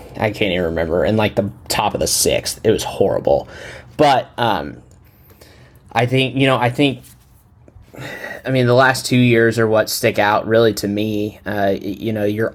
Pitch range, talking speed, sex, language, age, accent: 110-150 Hz, 185 wpm, male, English, 10-29, American